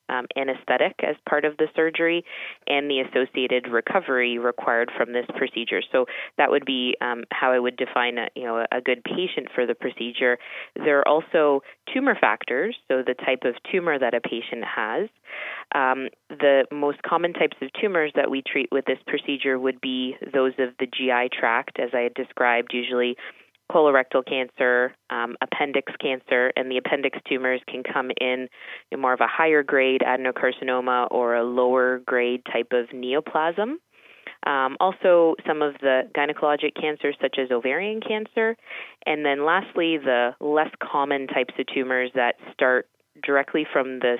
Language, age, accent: English, 20-39, American